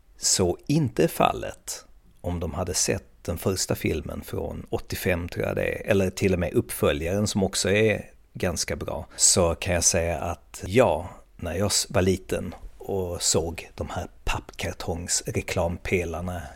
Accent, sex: native, male